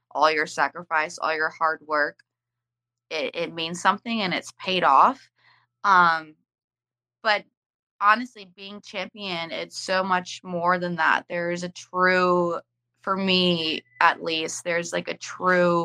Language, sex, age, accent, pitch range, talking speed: English, female, 20-39, American, 160-190 Hz, 145 wpm